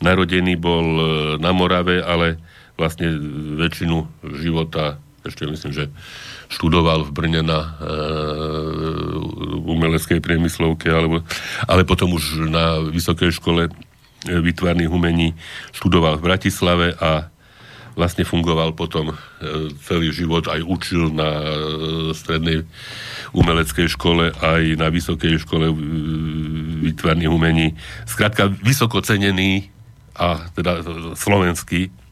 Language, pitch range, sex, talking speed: Slovak, 80-100 Hz, male, 105 wpm